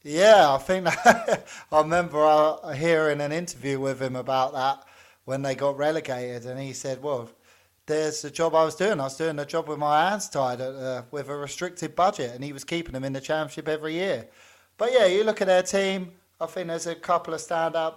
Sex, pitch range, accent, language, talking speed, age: male, 145-165 Hz, British, English, 215 wpm, 20-39